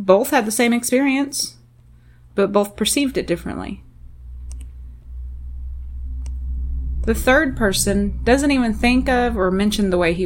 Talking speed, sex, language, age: 130 wpm, female, English, 30-49